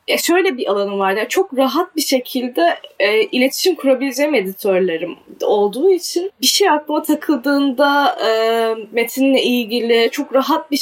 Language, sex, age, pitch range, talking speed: Turkish, female, 10-29, 240-290 Hz, 145 wpm